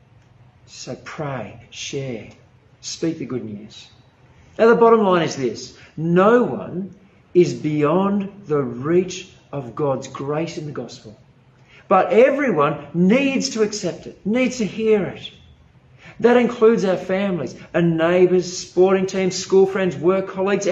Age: 50-69